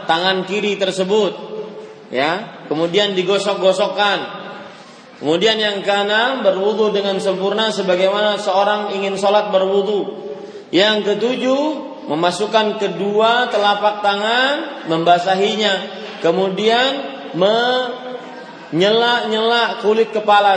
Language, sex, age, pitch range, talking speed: Malay, male, 30-49, 180-225 Hz, 80 wpm